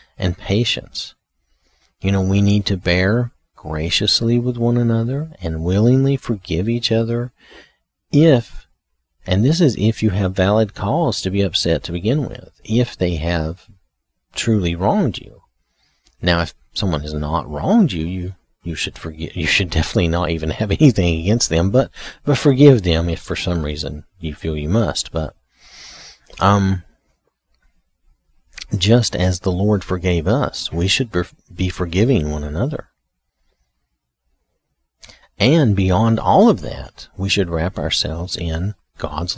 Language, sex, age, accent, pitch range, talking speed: English, male, 40-59, American, 80-110 Hz, 145 wpm